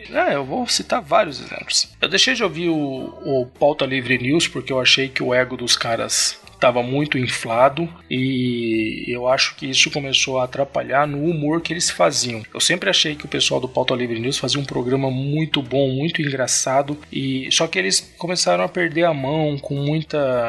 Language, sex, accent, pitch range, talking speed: Portuguese, male, Brazilian, 130-165 Hz, 195 wpm